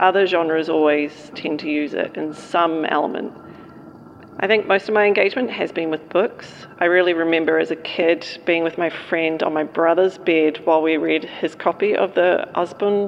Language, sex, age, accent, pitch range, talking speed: English, female, 40-59, Australian, 160-195 Hz, 195 wpm